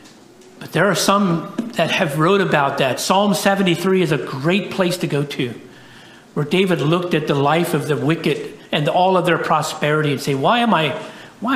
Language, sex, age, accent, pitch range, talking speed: English, male, 60-79, American, 155-200 Hz, 195 wpm